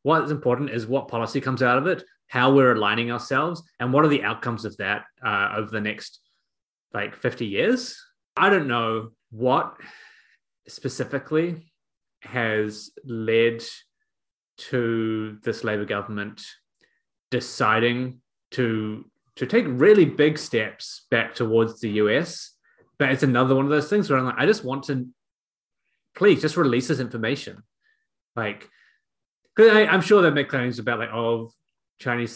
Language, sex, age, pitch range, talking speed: English, male, 20-39, 110-150 Hz, 145 wpm